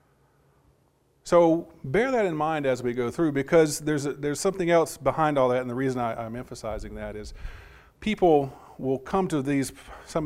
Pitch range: 120-155 Hz